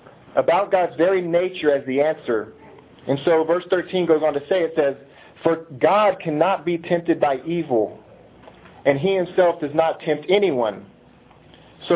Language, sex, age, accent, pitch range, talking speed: English, male, 40-59, American, 145-180 Hz, 160 wpm